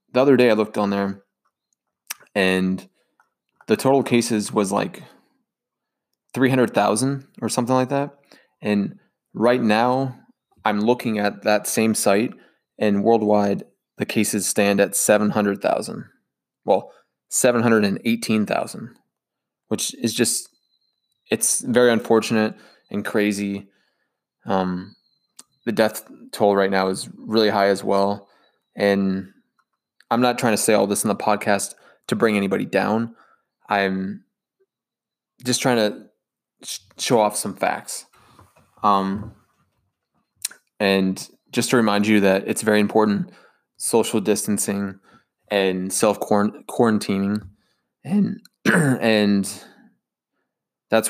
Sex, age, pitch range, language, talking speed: male, 20-39, 100-115 Hz, English, 115 wpm